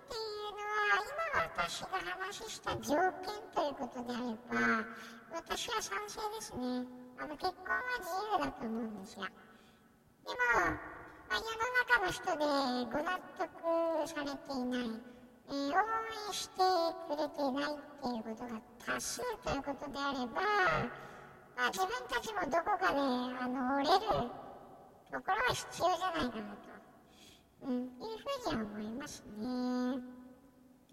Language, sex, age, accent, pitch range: Japanese, male, 10-29, American, 270-375 Hz